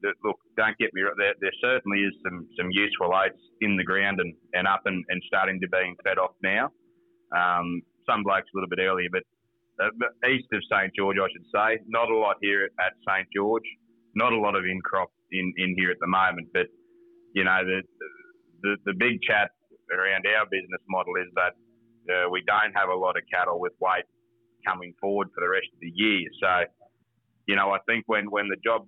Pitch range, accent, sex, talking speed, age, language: 95-115 Hz, Australian, male, 215 wpm, 30-49, English